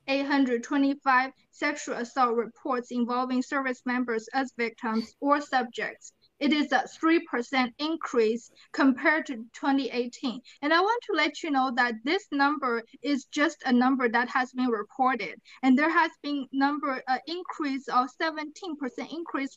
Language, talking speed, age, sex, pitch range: English, 150 wpm, 20-39, female, 245-290 Hz